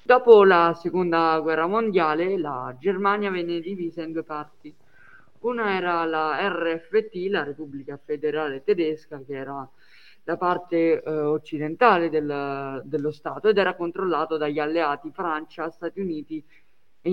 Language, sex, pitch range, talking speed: Italian, female, 150-180 Hz, 135 wpm